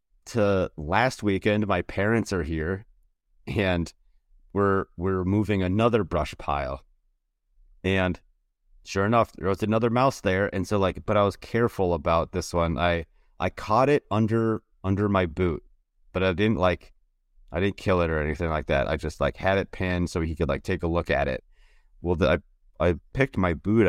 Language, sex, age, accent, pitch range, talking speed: English, male, 30-49, American, 85-110 Hz, 185 wpm